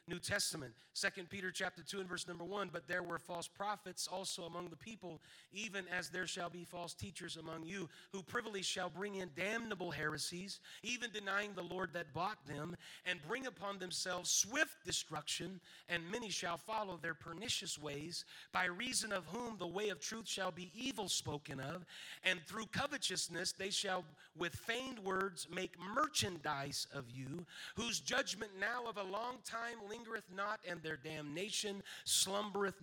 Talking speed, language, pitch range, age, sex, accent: 170 wpm, English, 175-205 Hz, 40-59, male, American